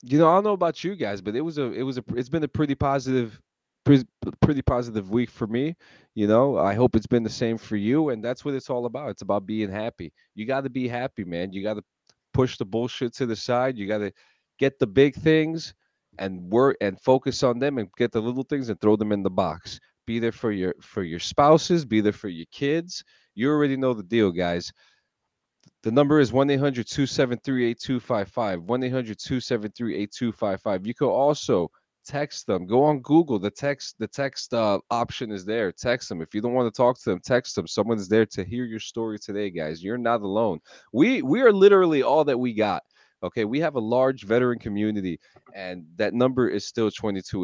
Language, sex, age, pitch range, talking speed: English, male, 30-49, 110-135 Hz, 215 wpm